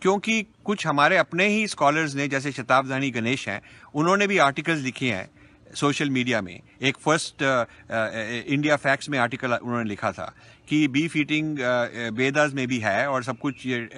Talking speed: 180 wpm